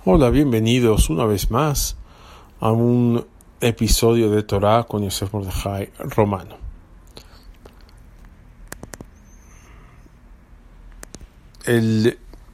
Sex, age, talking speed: male, 50-69, 70 wpm